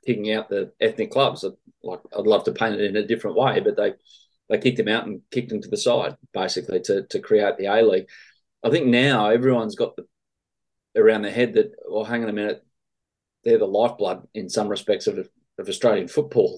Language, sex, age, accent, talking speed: English, male, 30-49, Australian, 215 wpm